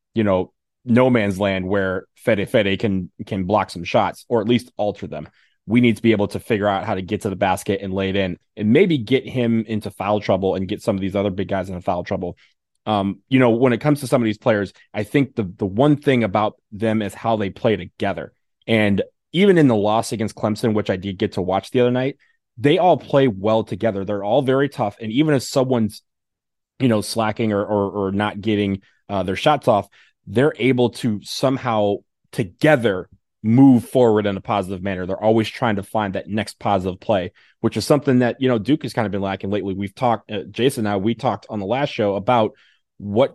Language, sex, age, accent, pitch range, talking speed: English, male, 20-39, American, 100-120 Hz, 230 wpm